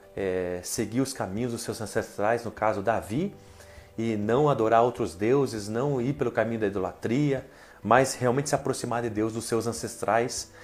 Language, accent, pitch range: Portuguese, Brazilian, 110-145 Hz